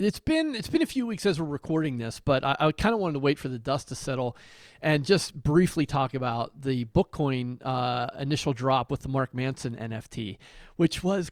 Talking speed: 215 wpm